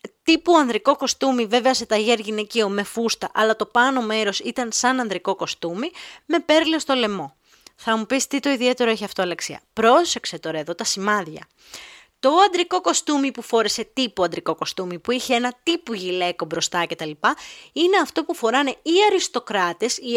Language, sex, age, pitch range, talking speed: Greek, female, 20-39, 195-275 Hz, 175 wpm